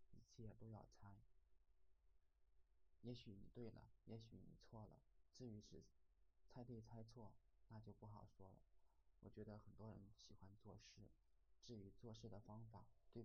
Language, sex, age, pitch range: Chinese, male, 20-39, 80-115 Hz